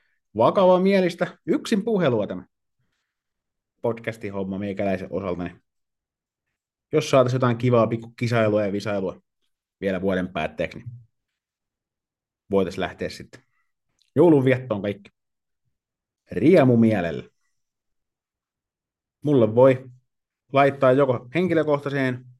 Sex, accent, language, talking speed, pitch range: male, native, Finnish, 90 wpm, 105-130 Hz